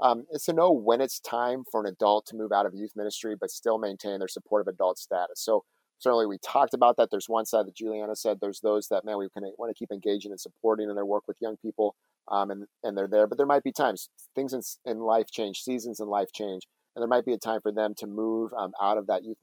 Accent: American